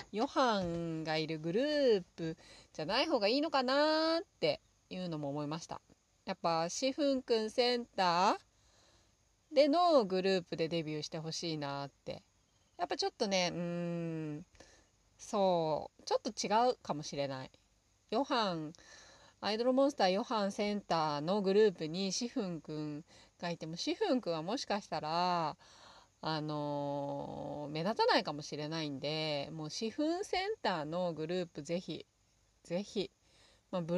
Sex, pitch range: female, 155-225 Hz